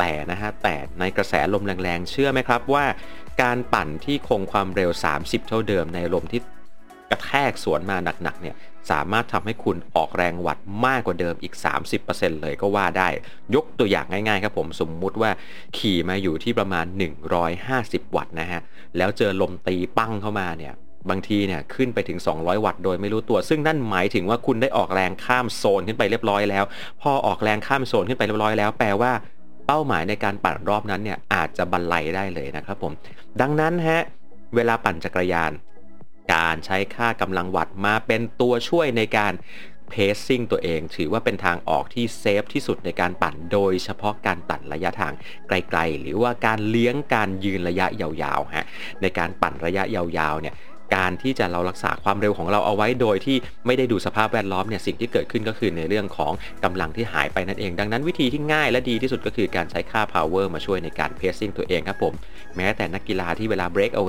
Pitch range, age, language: 90-115 Hz, 30-49, Thai